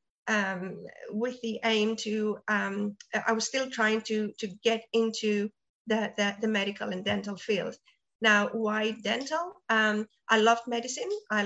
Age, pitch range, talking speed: 30-49, 215-240 Hz, 150 wpm